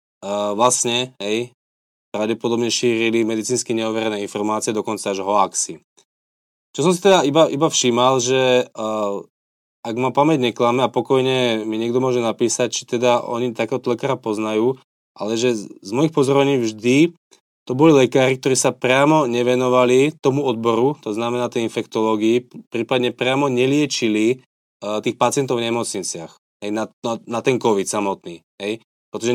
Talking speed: 150 wpm